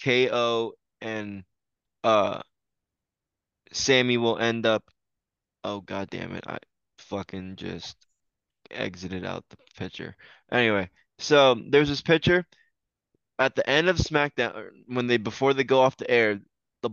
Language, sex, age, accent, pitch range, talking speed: English, male, 20-39, American, 105-130 Hz, 130 wpm